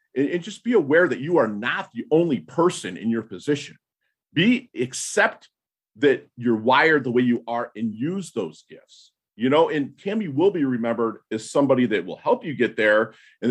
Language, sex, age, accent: English, male, 40-59, American